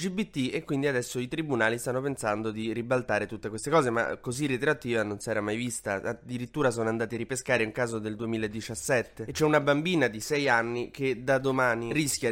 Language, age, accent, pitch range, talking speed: Italian, 20-39, native, 120-145 Hz, 195 wpm